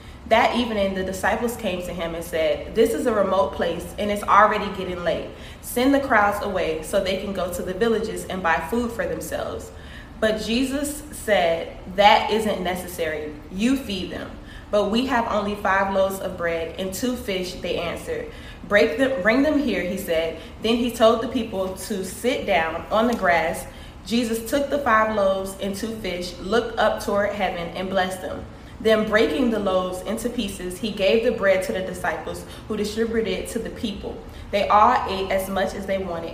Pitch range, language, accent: 185-225 Hz, English, American